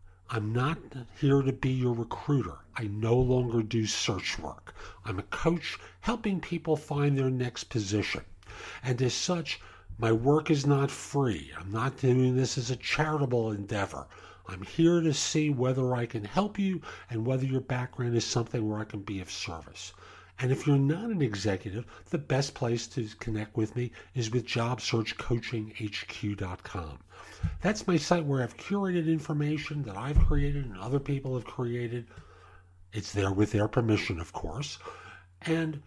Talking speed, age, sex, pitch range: 165 wpm, 50-69, male, 105-150 Hz